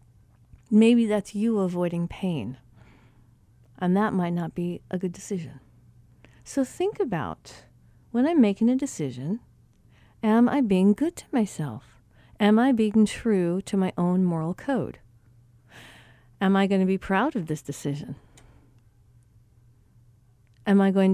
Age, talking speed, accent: 50-69, 135 wpm, American